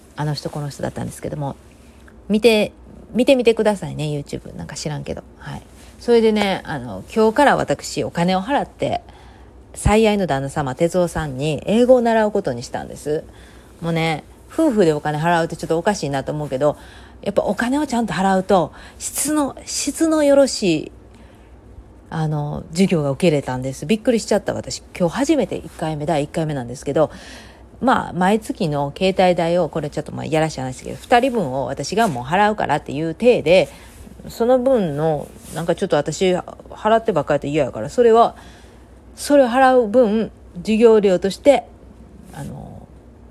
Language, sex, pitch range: Japanese, female, 150-230 Hz